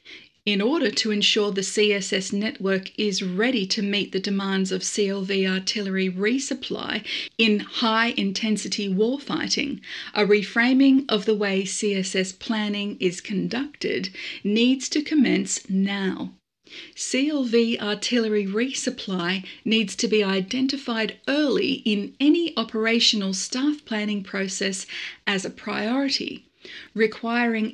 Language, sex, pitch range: English, female, 195-245 Hz